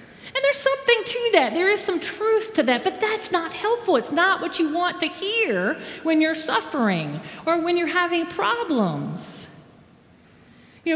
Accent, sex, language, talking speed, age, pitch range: American, female, English, 170 wpm, 40-59, 225-355 Hz